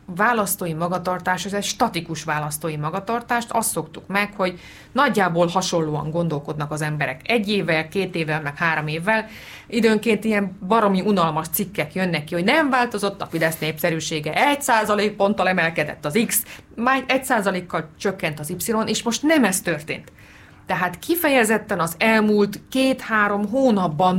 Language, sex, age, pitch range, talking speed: Hungarian, female, 30-49, 165-215 Hz, 145 wpm